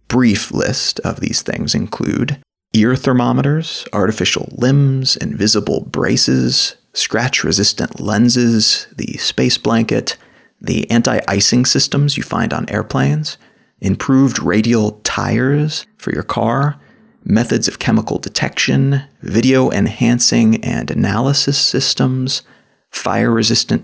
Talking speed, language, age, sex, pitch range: 100 wpm, English, 30-49, male, 110-135 Hz